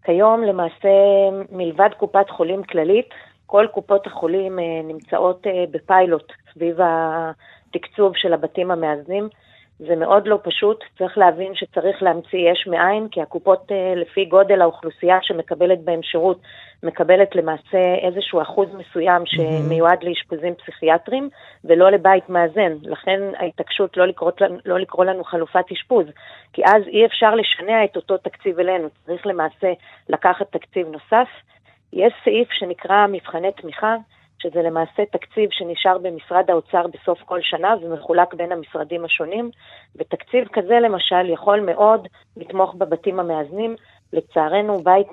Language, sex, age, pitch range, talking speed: Hebrew, female, 30-49, 165-195 Hz, 125 wpm